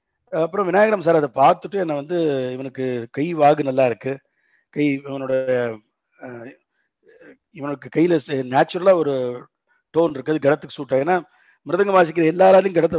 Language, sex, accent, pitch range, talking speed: Tamil, male, native, 140-185 Hz, 120 wpm